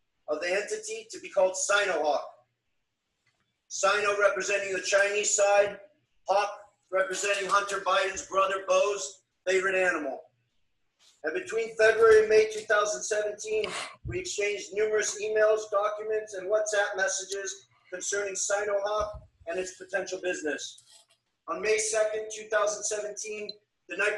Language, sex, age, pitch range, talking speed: English, male, 40-59, 190-215 Hz, 115 wpm